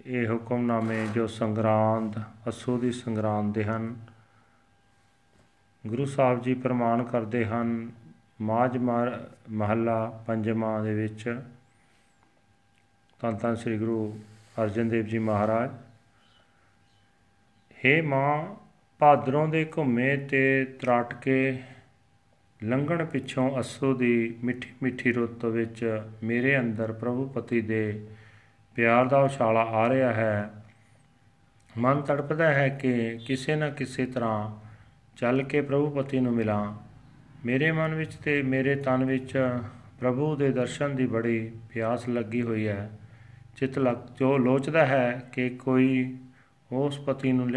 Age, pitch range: 40-59, 115-130 Hz